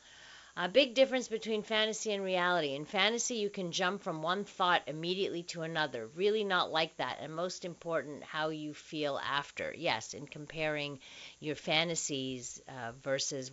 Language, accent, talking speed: English, American, 160 wpm